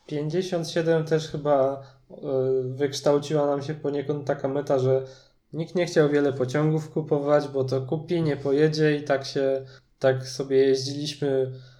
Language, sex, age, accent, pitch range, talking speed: Polish, male, 20-39, native, 135-155 Hz, 140 wpm